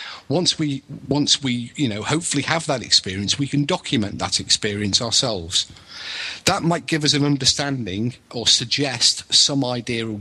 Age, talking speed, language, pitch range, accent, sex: 40-59, 160 wpm, English, 105-135 Hz, British, male